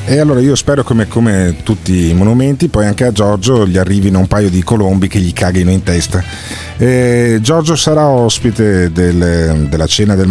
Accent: native